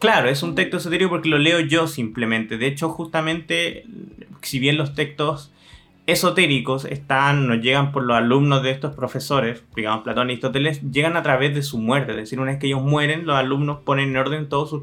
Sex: male